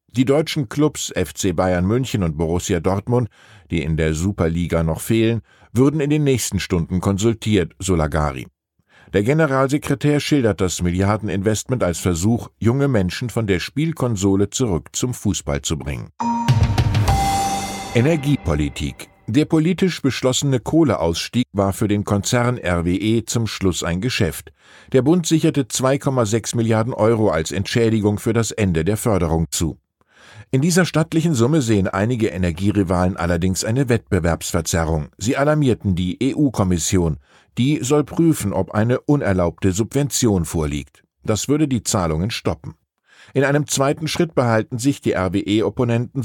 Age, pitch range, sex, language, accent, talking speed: 50-69, 90-130 Hz, male, German, German, 135 wpm